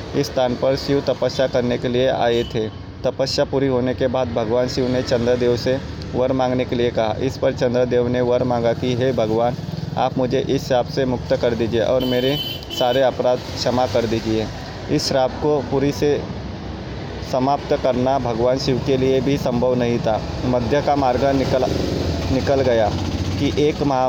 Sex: male